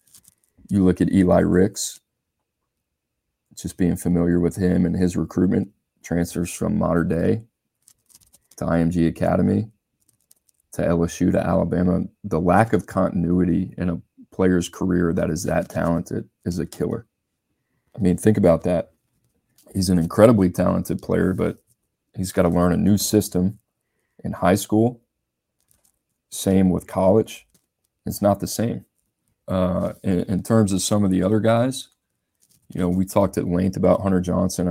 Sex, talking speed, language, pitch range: male, 150 wpm, English, 90-100 Hz